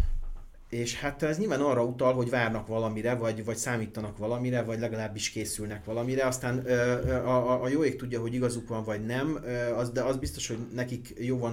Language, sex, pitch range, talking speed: Hungarian, male, 110-125 Hz, 175 wpm